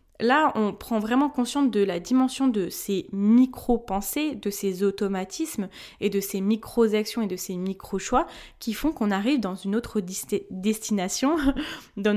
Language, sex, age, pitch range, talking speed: French, female, 20-39, 200-260 Hz, 155 wpm